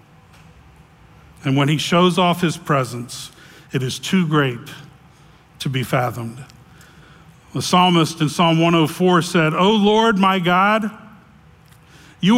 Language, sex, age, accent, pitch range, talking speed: English, male, 50-69, American, 140-185 Hz, 120 wpm